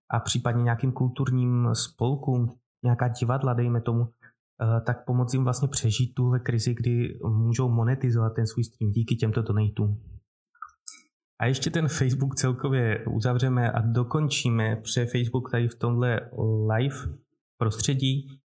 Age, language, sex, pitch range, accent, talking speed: 20-39, Czech, male, 115-130 Hz, native, 130 wpm